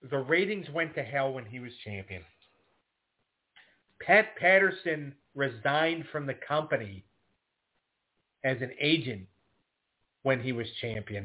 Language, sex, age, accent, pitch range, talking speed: English, male, 40-59, American, 120-140 Hz, 115 wpm